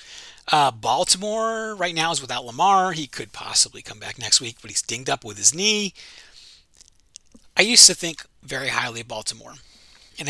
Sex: male